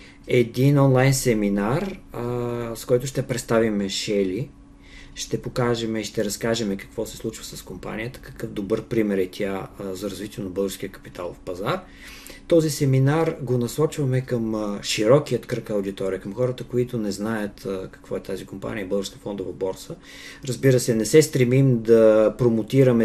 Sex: male